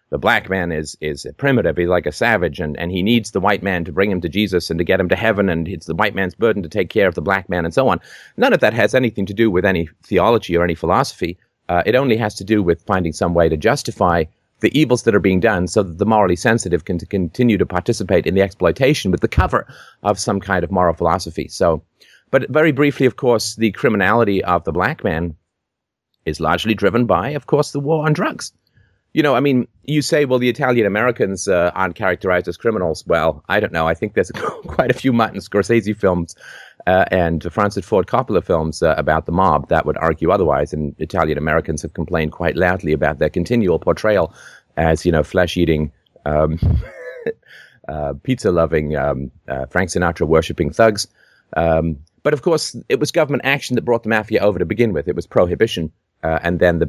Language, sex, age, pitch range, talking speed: English, male, 30-49, 80-115 Hz, 215 wpm